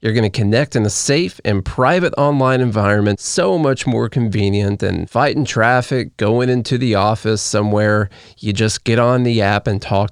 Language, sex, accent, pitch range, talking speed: English, male, American, 110-140 Hz, 185 wpm